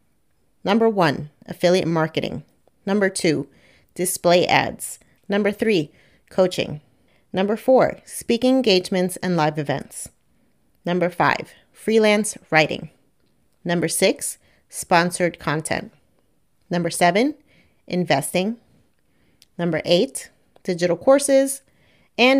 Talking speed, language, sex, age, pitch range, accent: 90 wpm, English, female, 30-49, 170-225 Hz, American